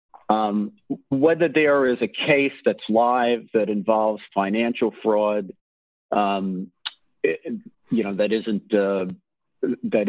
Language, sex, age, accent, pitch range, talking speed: English, male, 50-69, American, 110-140 Hz, 120 wpm